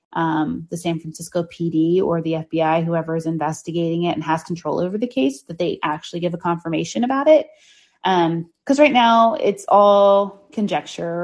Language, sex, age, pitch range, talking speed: English, female, 30-49, 170-230 Hz, 175 wpm